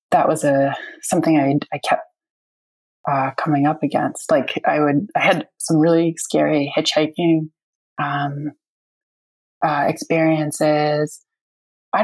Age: 20-39